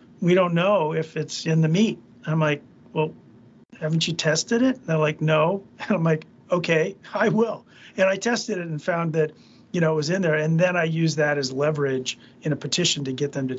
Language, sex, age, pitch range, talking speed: English, male, 40-59, 145-180 Hz, 230 wpm